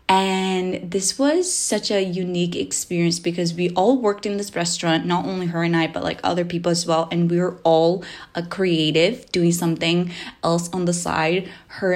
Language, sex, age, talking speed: English, female, 20-39, 190 wpm